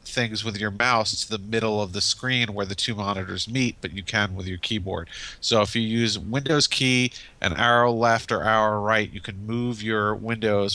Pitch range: 100-115 Hz